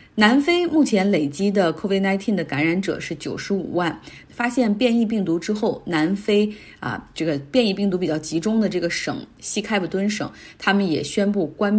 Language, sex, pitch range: Chinese, female, 165-210 Hz